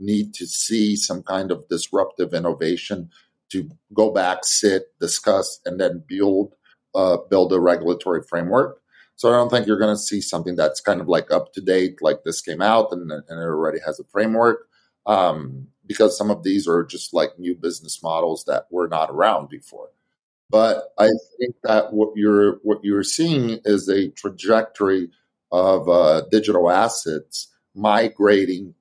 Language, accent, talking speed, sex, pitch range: English, American, 165 wpm, male, 90-110 Hz